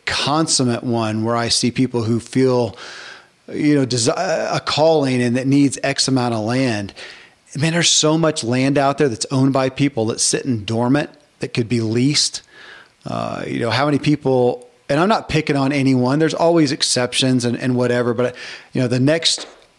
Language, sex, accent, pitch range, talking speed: English, male, American, 120-145 Hz, 180 wpm